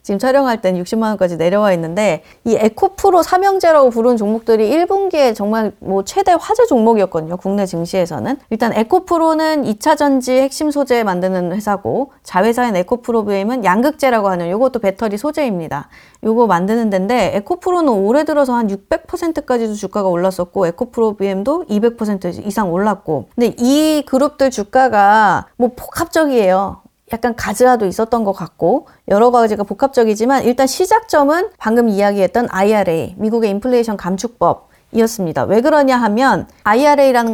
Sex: female